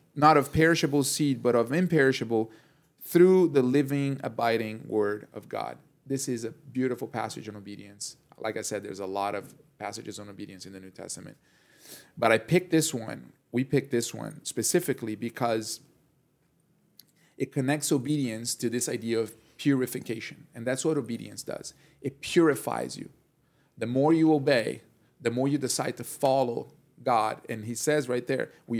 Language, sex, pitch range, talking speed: English, male, 115-150 Hz, 165 wpm